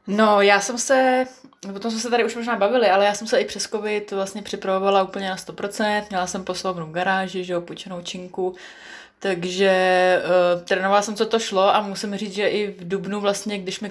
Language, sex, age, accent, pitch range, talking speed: Czech, female, 20-39, native, 180-200 Hz, 205 wpm